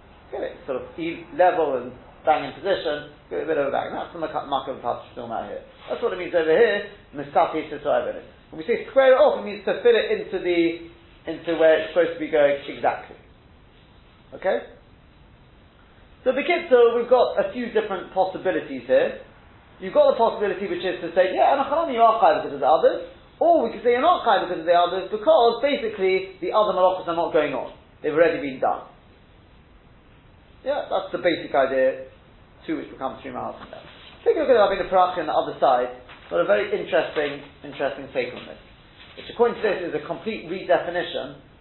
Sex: male